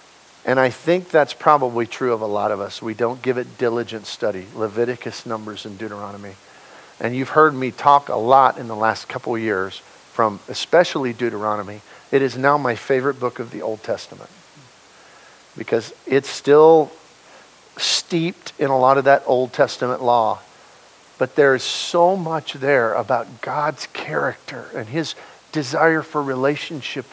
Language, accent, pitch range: English, American, 125-155 Hz